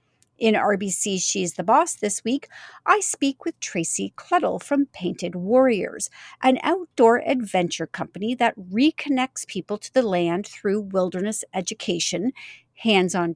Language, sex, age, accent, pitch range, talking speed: English, female, 50-69, American, 190-270 Hz, 130 wpm